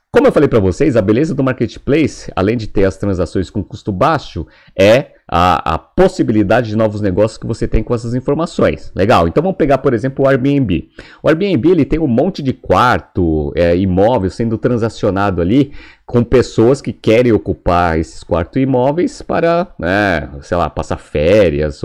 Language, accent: Portuguese, Brazilian